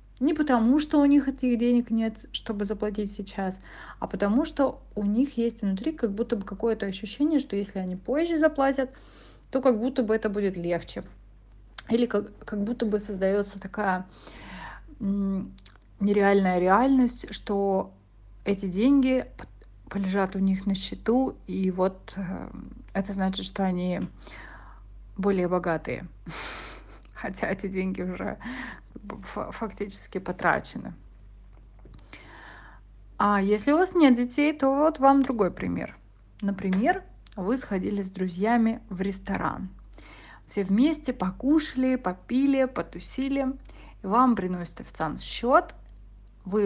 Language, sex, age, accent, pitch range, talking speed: Russian, female, 30-49, native, 185-255 Hz, 120 wpm